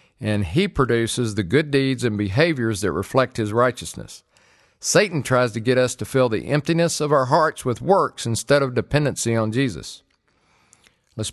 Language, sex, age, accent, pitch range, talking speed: English, male, 50-69, American, 115-145 Hz, 170 wpm